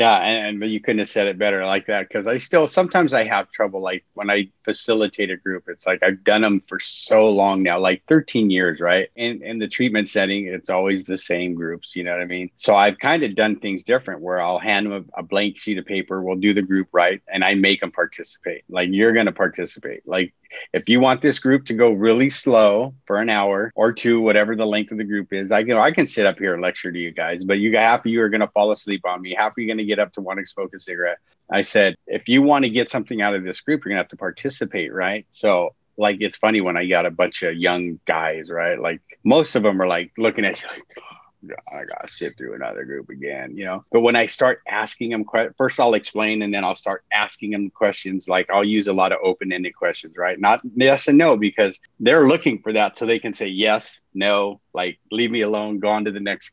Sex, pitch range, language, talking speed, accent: male, 95-115 Hz, English, 260 wpm, American